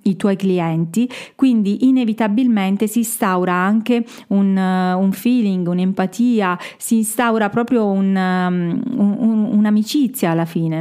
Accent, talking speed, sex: native, 115 wpm, female